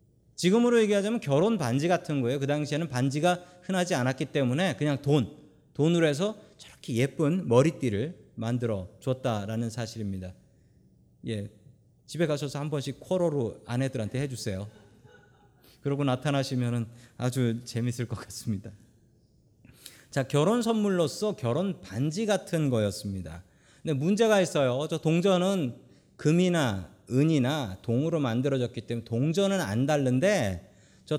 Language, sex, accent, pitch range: Korean, male, native, 115-175 Hz